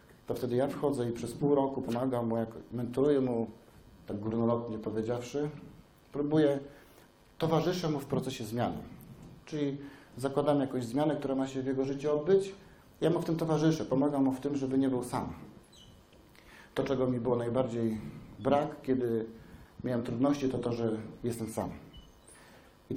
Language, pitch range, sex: Polish, 115-145 Hz, male